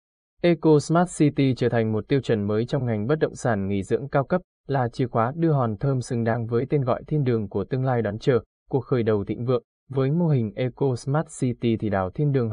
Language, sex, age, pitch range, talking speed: Vietnamese, male, 20-39, 110-140 Hz, 245 wpm